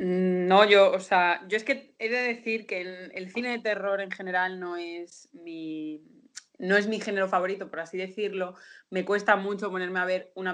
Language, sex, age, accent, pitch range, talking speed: Spanish, female, 20-39, Spanish, 180-225 Hz, 205 wpm